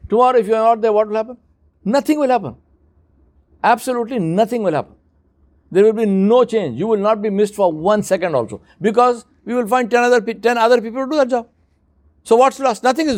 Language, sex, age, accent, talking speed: English, male, 60-79, Indian, 225 wpm